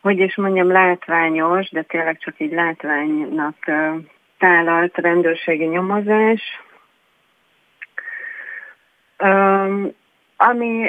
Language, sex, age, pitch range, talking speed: Hungarian, female, 30-49, 160-195 Hz, 70 wpm